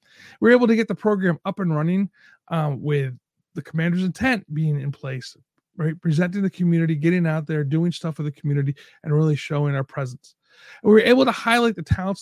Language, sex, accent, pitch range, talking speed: English, male, American, 150-215 Hz, 210 wpm